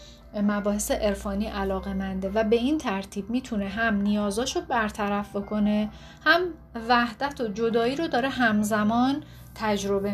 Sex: female